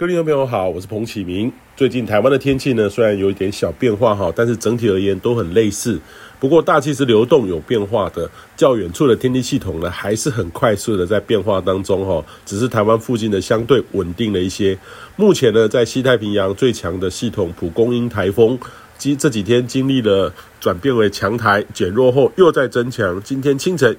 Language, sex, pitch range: Chinese, male, 100-130 Hz